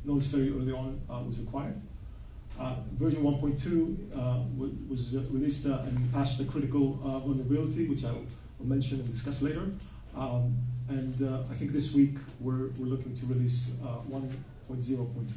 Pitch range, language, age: 120-135 Hz, Dutch, 40-59